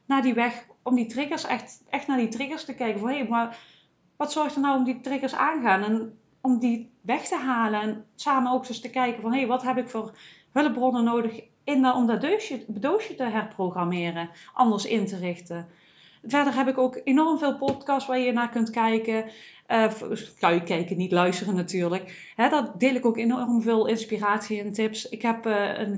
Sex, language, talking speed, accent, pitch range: female, Dutch, 210 wpm, Dutch, 220-260 Hz